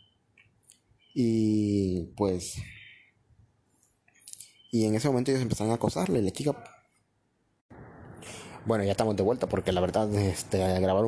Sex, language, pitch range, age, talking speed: male, English, 100-125 Hz, 30-49, 120 wpm